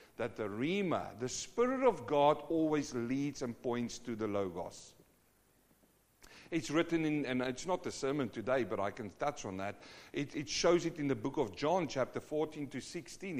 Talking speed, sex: 190 wpm, male